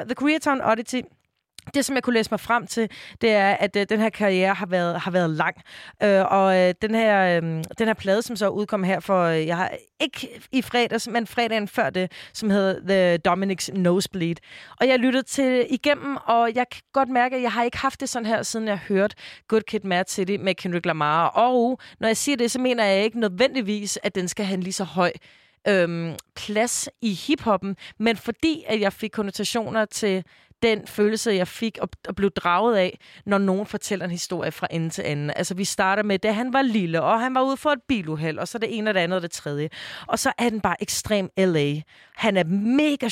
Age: 30-49